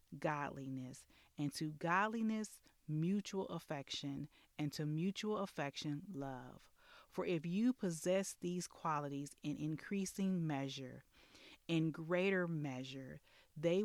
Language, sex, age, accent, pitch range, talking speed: English, female, 30-49, American, 140-180 Hz, 105 wpm